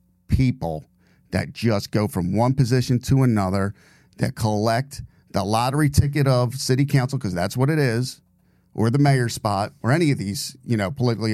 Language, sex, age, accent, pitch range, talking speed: English, male, 40-59, American, 105-130 Hz, 175 wpm